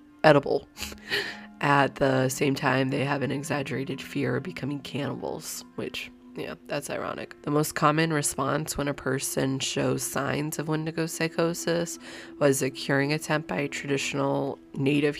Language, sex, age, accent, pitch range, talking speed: English, female, 20-39, American, 135-165 Hz, 140 wpm